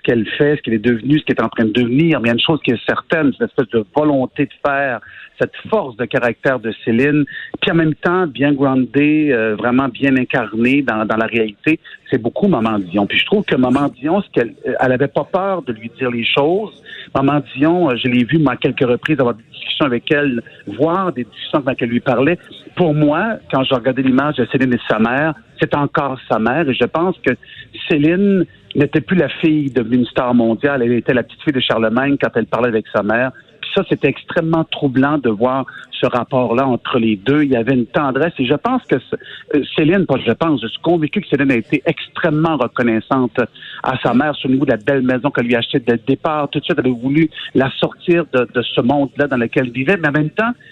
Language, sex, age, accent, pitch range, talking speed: French, male, 50-69, French, 125-160 Hz, 235 wpm